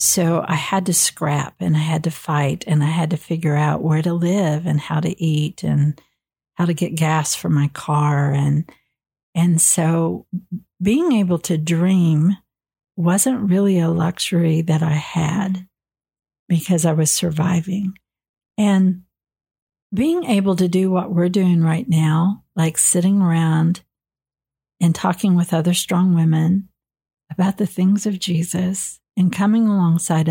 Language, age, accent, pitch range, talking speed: English, 50-69, American, 165-195 Hz, 150 wpm